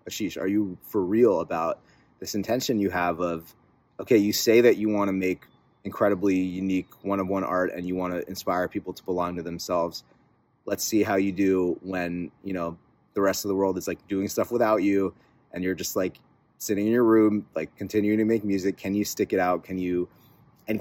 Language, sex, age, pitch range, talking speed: English, male, 30-49, 95-110 Hz, 215 wpm